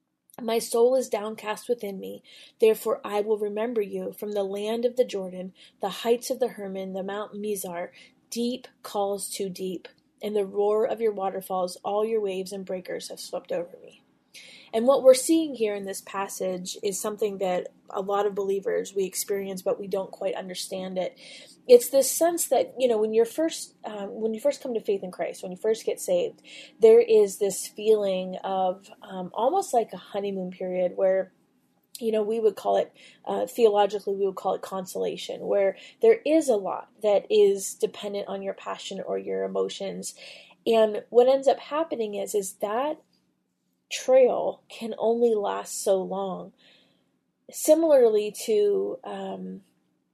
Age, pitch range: 20-39, 195-260 Hz